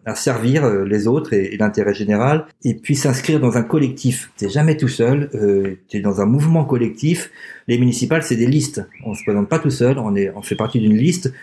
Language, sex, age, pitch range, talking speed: French, male, 50-69, 110-145 Hz, 225 wpm